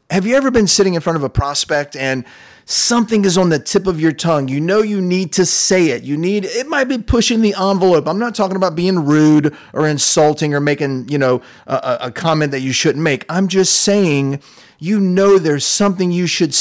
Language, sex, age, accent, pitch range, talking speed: English, male, 30-49, American, 135-185 Hz, 225 wpm